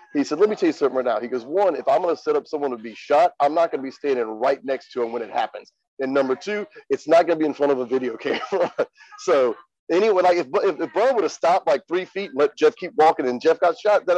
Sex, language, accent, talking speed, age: male, English, American, 305 wpm, 40-59